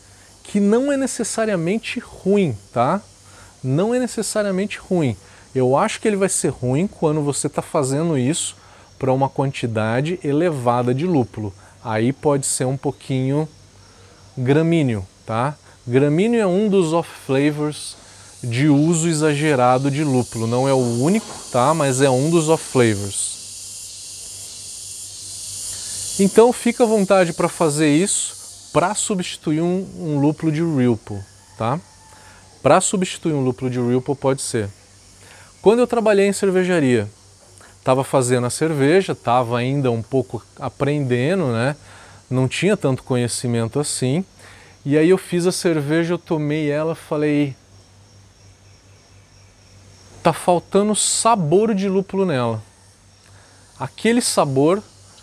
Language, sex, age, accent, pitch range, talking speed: Portuguese, male, 20-39, Brazilian, 100-170 Hz, 130 wpm